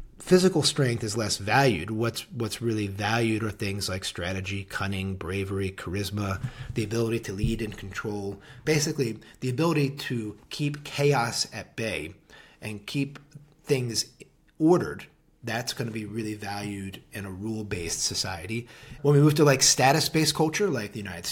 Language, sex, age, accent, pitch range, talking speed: English, male, 30-49, American, 110-145 Hz, 150 wpm